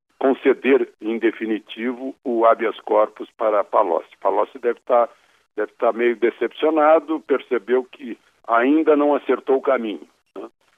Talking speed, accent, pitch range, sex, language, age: 115 wpm, Brazilian, 115-165 Hz, male, Portuguese, 60-79